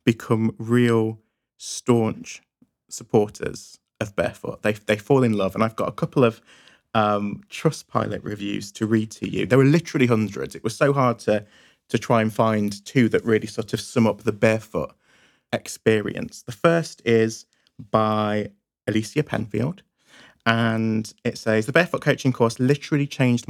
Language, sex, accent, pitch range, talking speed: English, male, British, 110-135 Hz, 160 wpm